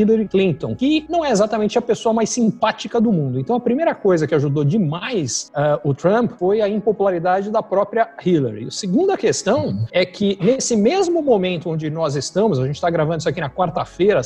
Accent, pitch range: Brazilian, 165-225 Hz